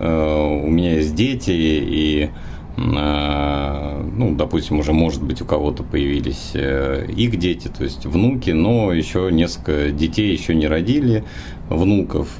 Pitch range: 75-95 Hz